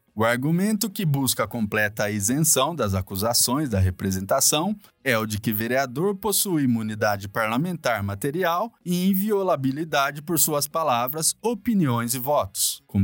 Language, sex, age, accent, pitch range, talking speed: Portuguese, male, 20-39, Brazilian, 105-165 Hz, 130 wpm